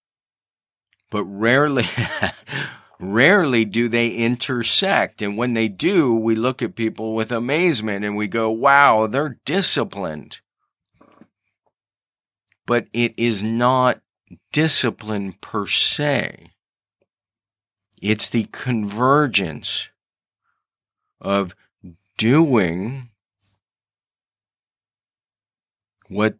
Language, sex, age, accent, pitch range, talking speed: English, male, 40-59, American, 100-120 Hz, 80 wpm